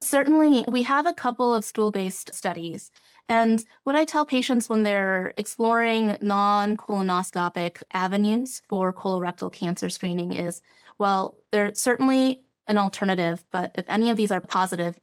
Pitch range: 180-225 Hz